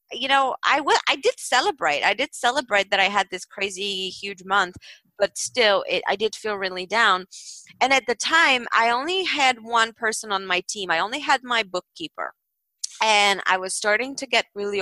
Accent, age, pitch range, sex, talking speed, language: American, 20-39, 190-265 Hz, female, 200 wpm, English